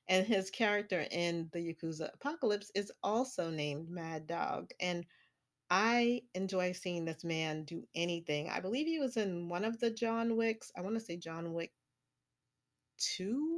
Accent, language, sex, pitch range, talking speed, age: American, English, female, 170-210 Hz, 165 wpm, 30-49